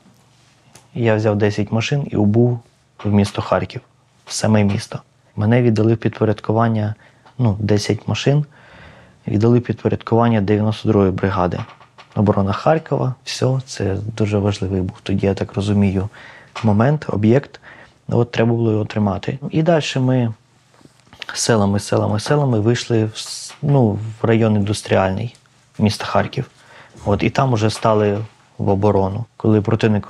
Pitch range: 105-130 Hz